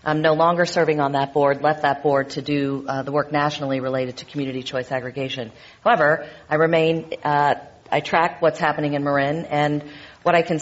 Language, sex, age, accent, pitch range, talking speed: English, female, 40-59, American, 135-155 Hz, 190 wpm